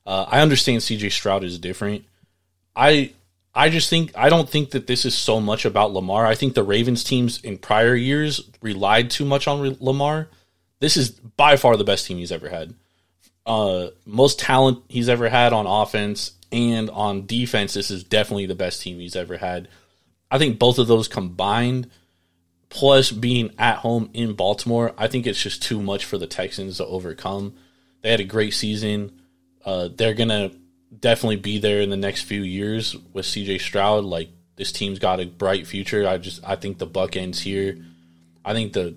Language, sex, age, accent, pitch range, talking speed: English, male, 20-39, American, 90-110 Hz, 190 wpm